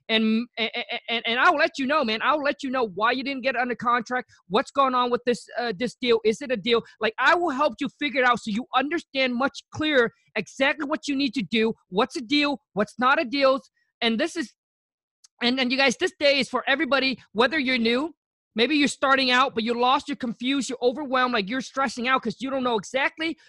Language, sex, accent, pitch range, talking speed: English, male, American, 230-290 Hz, 240 wpm